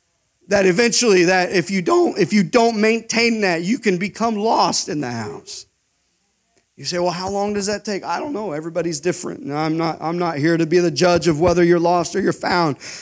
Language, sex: English, male